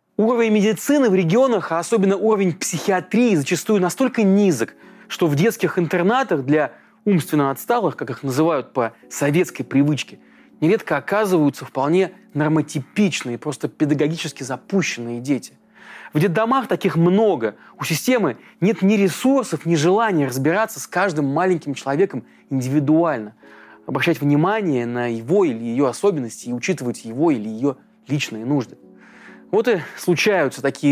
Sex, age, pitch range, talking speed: male, 20-39, 140-200 Hz, 130 wpm